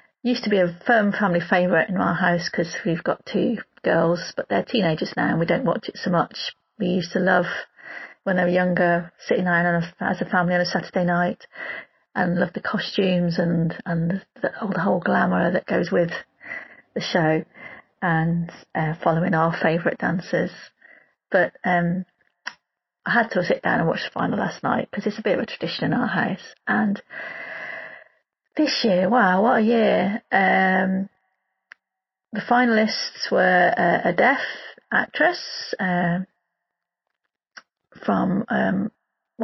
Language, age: English, 30-49